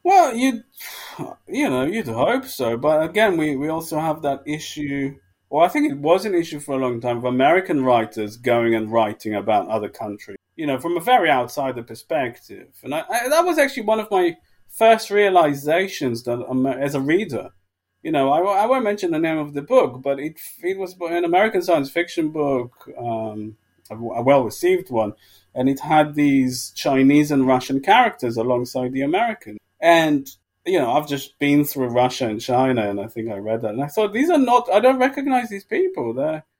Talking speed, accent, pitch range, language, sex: 200 wpm, British, 125-210 Hz, English, male